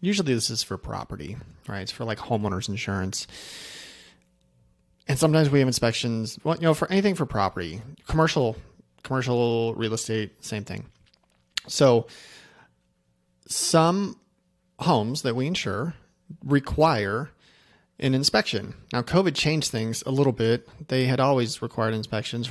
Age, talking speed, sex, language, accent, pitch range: 30-49, 135 wpm, male, English, American, 105-130 Hz